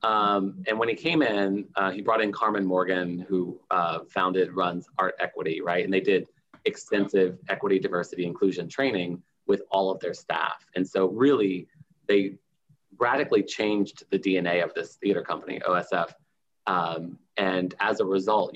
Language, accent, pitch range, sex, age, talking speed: English, American, 90-100 Hz, male, 30-49, 160 wpm